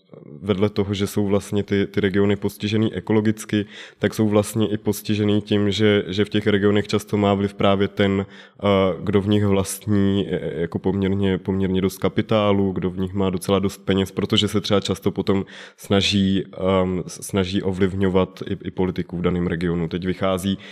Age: 20-39